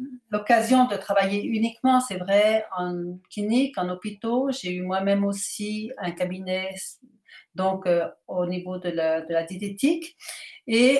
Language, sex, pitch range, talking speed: French, female, 190-240 Hz, 140 wpm